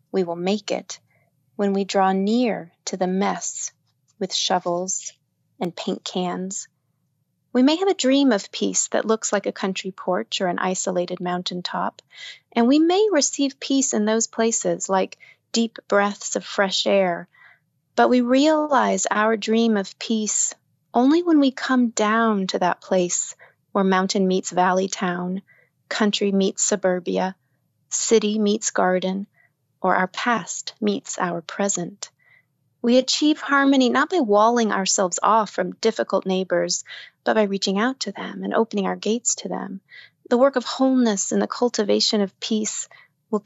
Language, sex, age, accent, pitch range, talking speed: English, female, 30-49, American, 185-230 Hz, 155 wpm